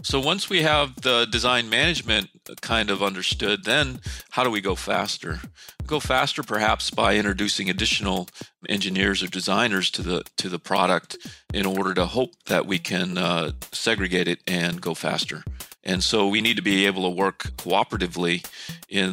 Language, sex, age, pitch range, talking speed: English, male, 40-59, 95-115 Hz, 170 wpm